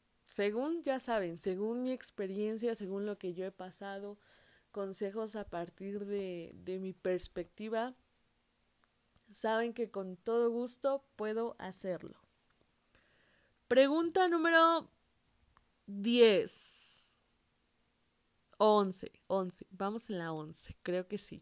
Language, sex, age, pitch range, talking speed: Spanish, female, 20-39, 180-225 Hz, 105 wpm